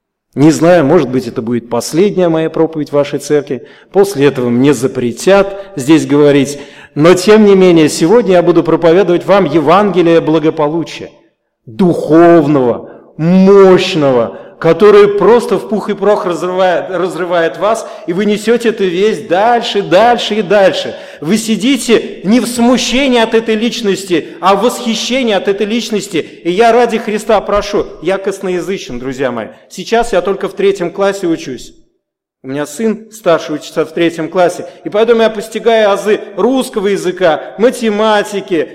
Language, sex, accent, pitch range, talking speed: Russian, male, native, 175-220 Hz, 145 wpm